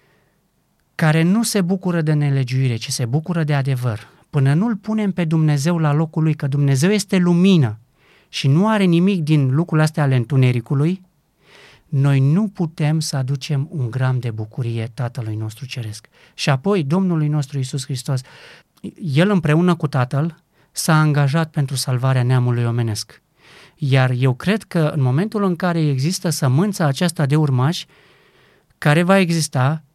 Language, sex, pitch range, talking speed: Romanian, male, 135-175 Hz, 155 wpm